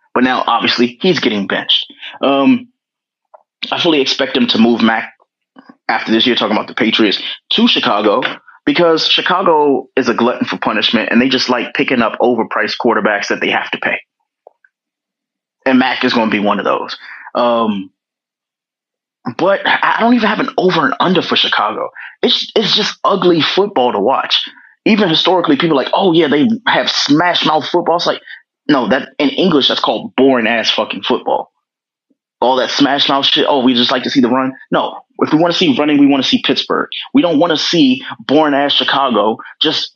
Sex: male